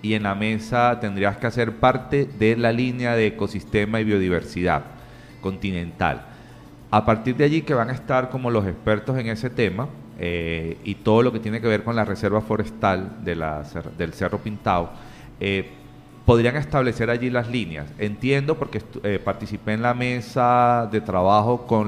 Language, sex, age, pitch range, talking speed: Spanish, male, 30-49, 100-120 Hz, 175 wpm